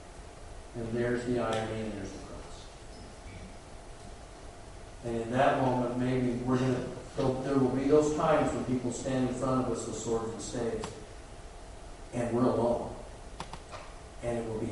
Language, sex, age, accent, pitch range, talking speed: English, male, 50-69, American, 110-135 Hz, 155 wpm